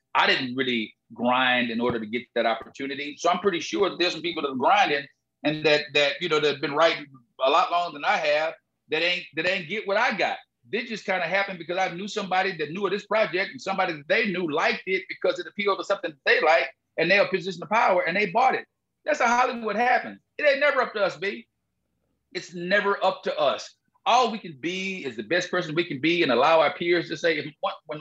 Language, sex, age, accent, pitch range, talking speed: English, male, 40-59, American, 145-215 Hz, 250 wpm